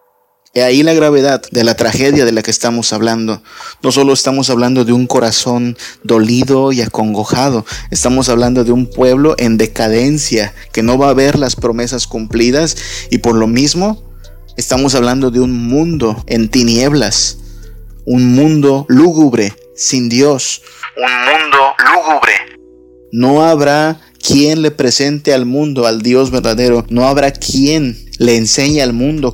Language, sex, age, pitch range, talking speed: Spanish, male, 30-49, 115-135 Hz, 150 wpm